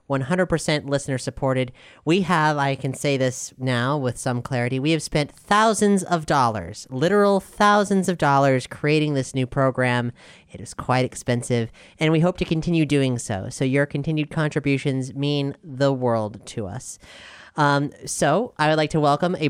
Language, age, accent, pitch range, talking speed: English, 30-49, American, 140-185 Hz, 165 wpm